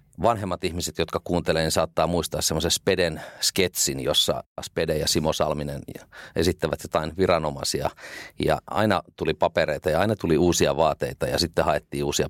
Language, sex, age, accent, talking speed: Finnish, male, 40-59, native, 145 wpm